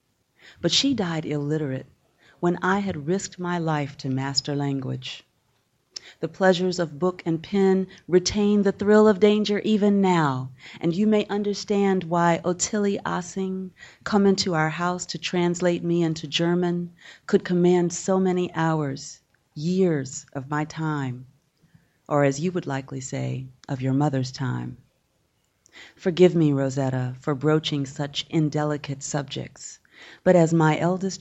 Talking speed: 140 wpm